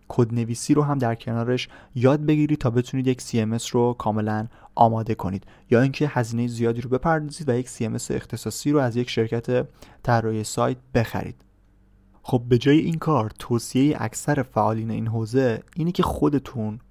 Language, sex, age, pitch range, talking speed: Persian, male, 20-39, 110-135 Hz, 165 wpm